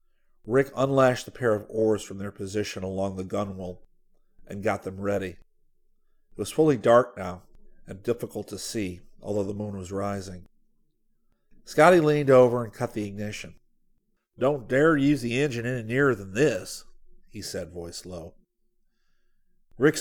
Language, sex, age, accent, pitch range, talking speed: English, male, 40-59, American, 100-125 Hz, 155 wpm